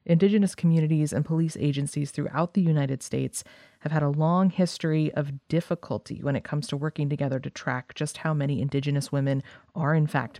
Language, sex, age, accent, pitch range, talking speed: English, female, 30-49, American, 145-170 Hz, 185 wpm